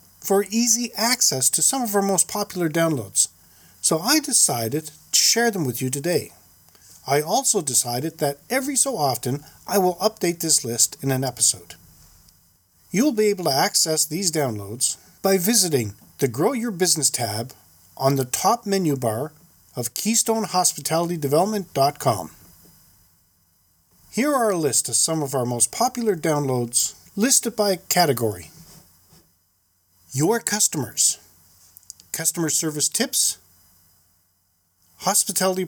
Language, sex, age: English, male, 40-59